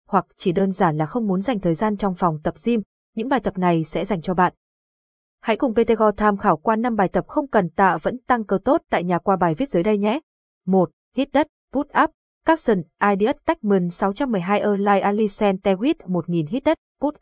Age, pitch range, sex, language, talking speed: 20-39, 190-235 Hz, female, Vietnamese, 215 wpm